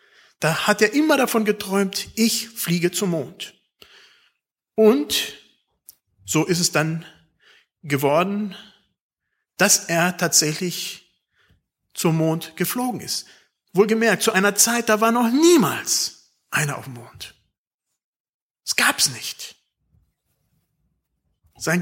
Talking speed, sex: 105 wpm, male